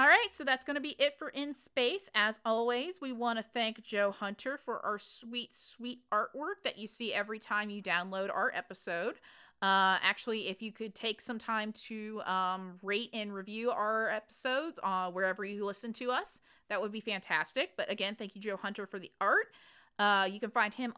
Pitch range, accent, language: 195-240 Hz, American, English